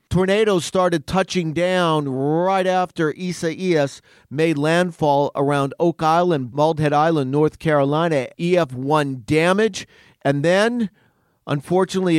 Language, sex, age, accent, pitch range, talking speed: English, male, 40-59, American, 130-170 Hz, 110 wpm